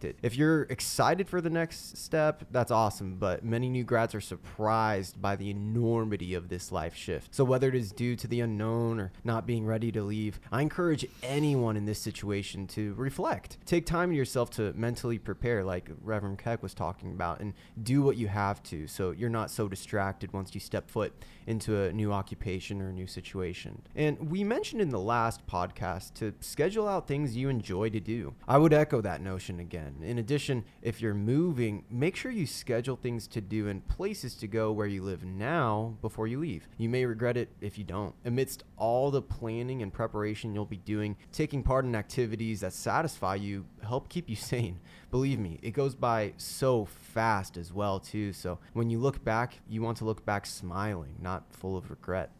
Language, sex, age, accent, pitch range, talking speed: English, male, 20-39, American, 100-125 Hz, 200 wpm